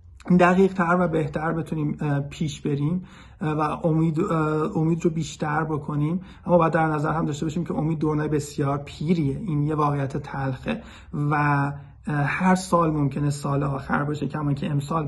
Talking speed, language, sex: 155 wpm, Persian, male